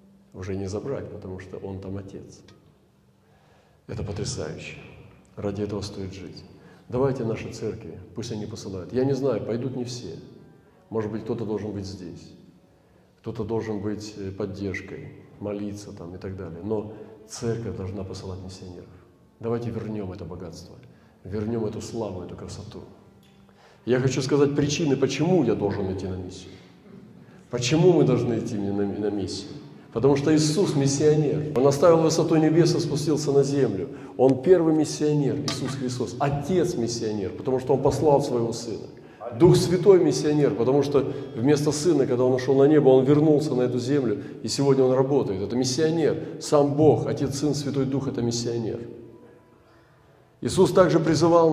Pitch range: 105-145 Hz